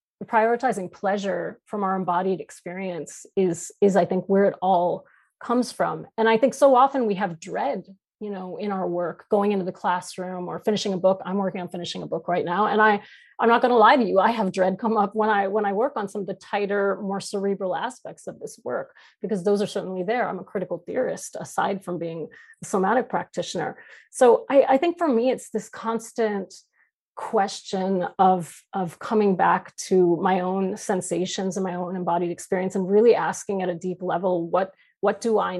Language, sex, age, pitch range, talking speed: English, female, 30-49, 185-215 Hz, 205 wpm